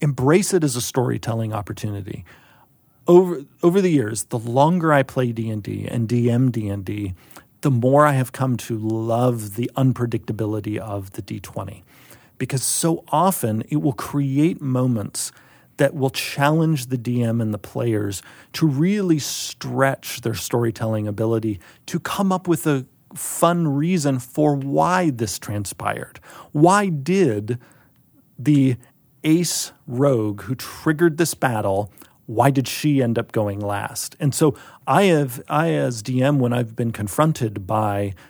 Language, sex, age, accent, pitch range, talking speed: English, male, 40-59, American, 110-150 Hz, 140 wpm